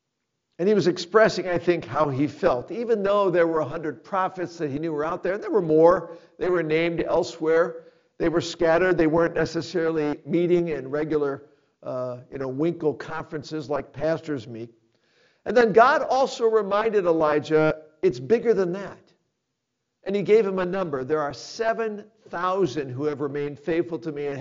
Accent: American